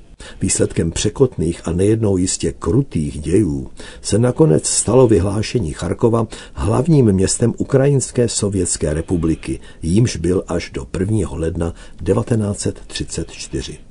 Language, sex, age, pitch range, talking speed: Czech, male, 60-79, 85-115 Hz, 105 wpm